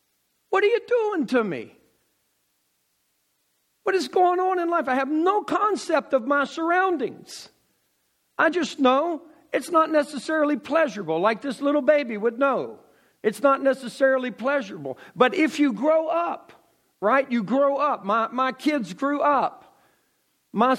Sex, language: male, English